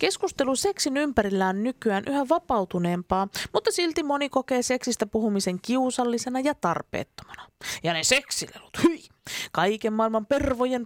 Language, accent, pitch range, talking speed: Finnish, native, 215-305 Hz, 125 wpm